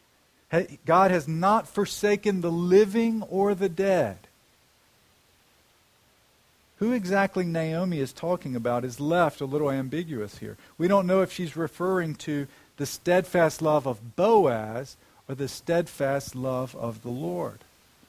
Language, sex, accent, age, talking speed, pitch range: English, male, American, 50-69, 135 wpm, 130-175 Hz